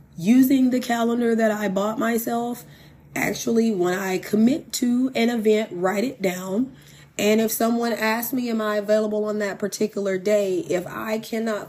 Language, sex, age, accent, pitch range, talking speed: English, female, 30-49, American, 180-220 Hz, 165 wpm